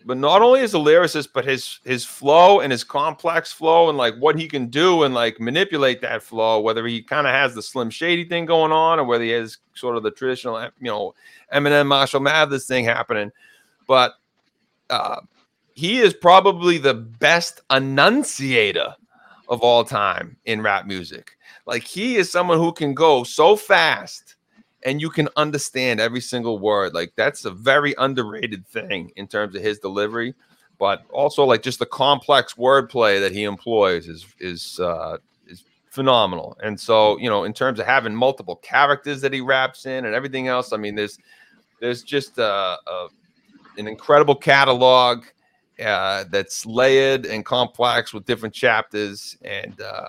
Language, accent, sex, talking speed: English, American, male, 170 wpm